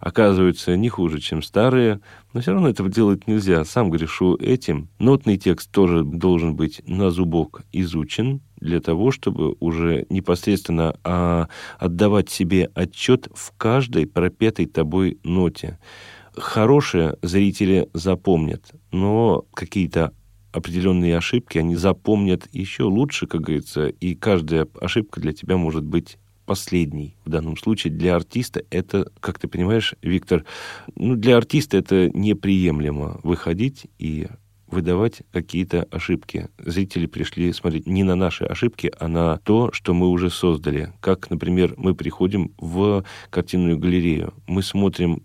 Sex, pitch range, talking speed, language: male, 85-100 Hz, 130 wpm, Russian